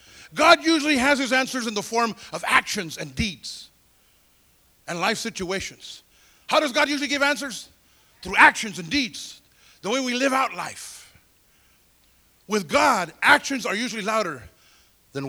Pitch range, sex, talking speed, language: 200-295 Hz, male, 150 wpm, English